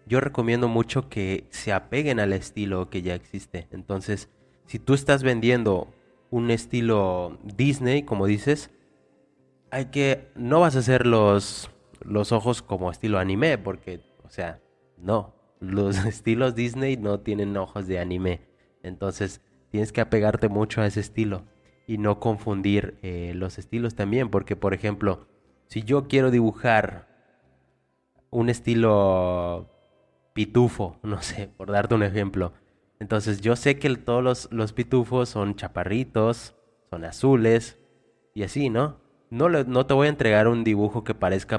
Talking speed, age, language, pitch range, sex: 145 wpm, 20-39, Spanish, 100-120 Hz, male